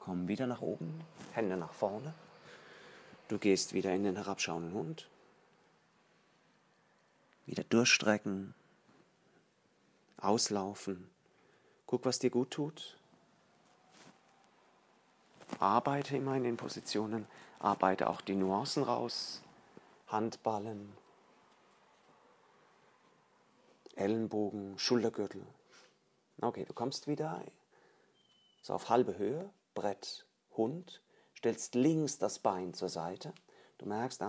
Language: German